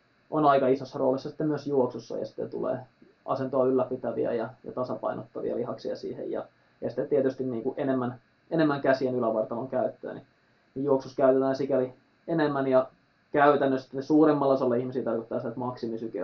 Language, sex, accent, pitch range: Finnish, male, native, 120-140 Hz